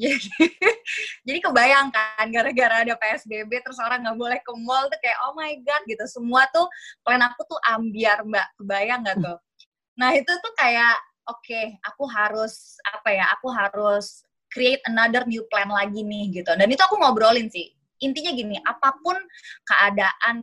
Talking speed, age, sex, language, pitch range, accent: 165 wpm, 20-39, female, Indonesian, 205-270 Hz, native